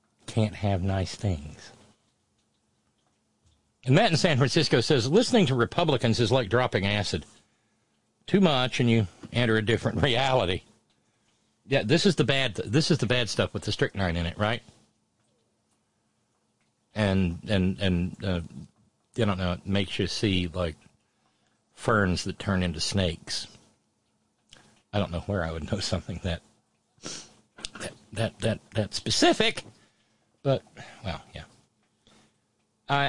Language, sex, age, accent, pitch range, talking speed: English, male, 50-69, American, 100-130 Hz, 135 wpm